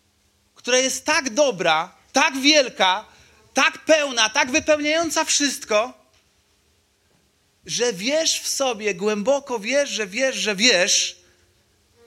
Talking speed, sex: 105 wpm, male